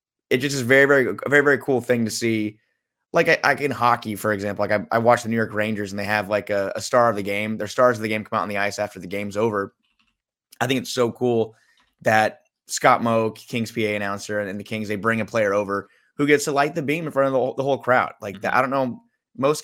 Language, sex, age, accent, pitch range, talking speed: English, male, 30-49, American, 105-125 Hz, 275 wpm